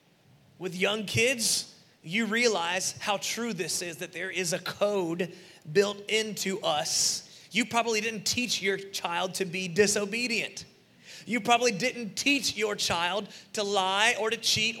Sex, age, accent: male, 30-49, American